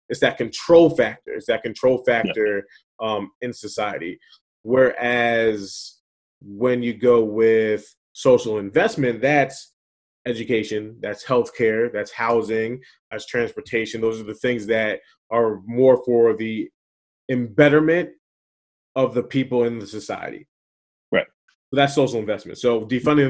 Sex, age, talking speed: male, 20-39, 120 wpm